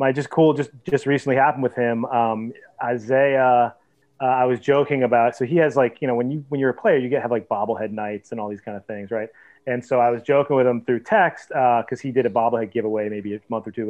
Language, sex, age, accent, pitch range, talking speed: English, male, 30-49, American, 115-135 Hz, 270 wpm